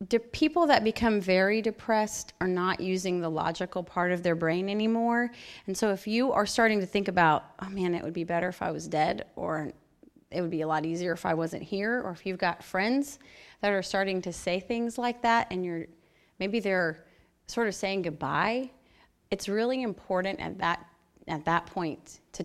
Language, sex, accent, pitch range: English, female, American, 175-220 Hz